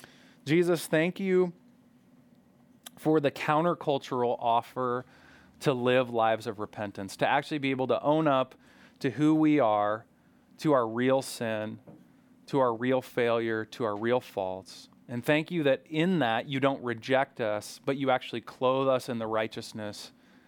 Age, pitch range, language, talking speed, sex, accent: 30-49, 110-135 Hz, English, 155 wpm, male, American